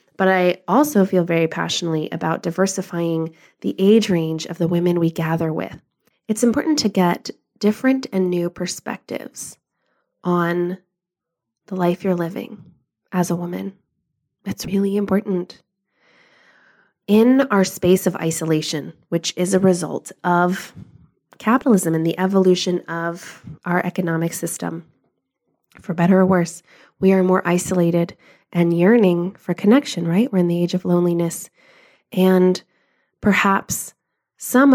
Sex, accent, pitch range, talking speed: female, American, 170-200 Hz, 130 wpm